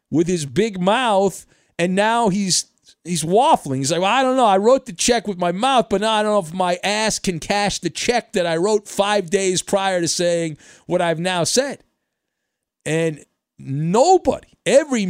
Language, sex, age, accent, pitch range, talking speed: English, male, 50-69, American, 150-210 Hz, 195 wpm